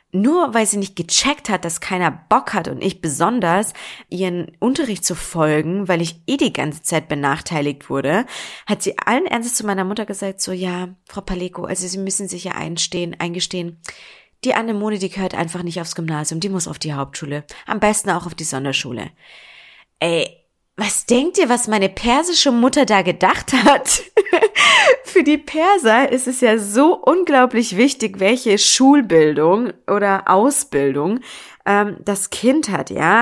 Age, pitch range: 20-39, 170-220 Hz